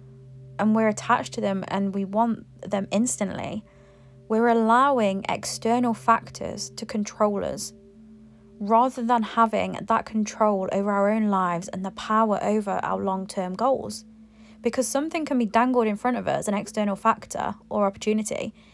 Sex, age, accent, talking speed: female, 20-39, British, 150 wpm